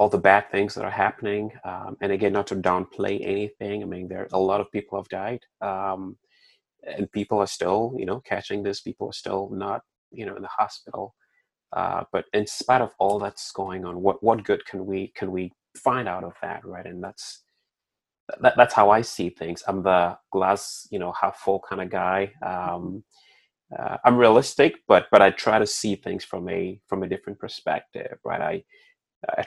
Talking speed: 205 wpm